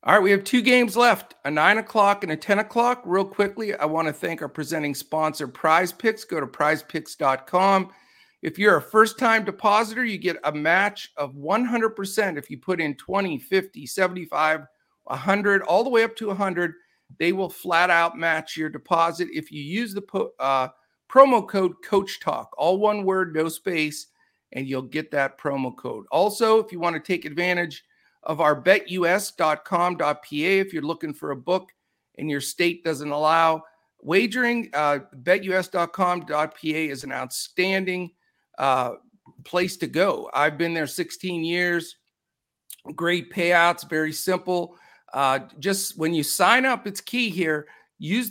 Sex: male